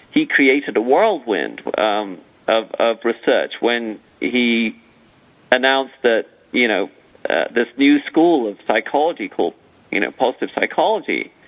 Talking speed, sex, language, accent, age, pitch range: 130 wpm, male, English, American, 50-69, 125-175 Hz